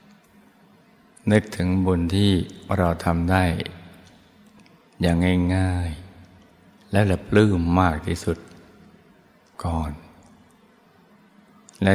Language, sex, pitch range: Thai, male, 85-105 Hz